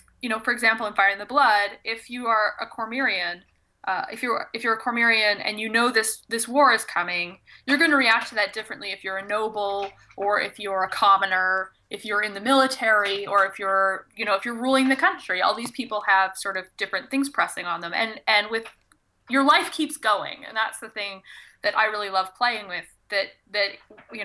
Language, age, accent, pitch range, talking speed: English, 20-39, American, 195-245 Hz, 225 wpm